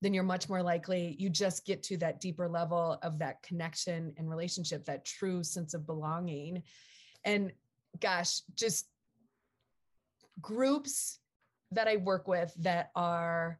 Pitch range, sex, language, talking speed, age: 170-205 Hz, female, English, 140 wpm, 20-39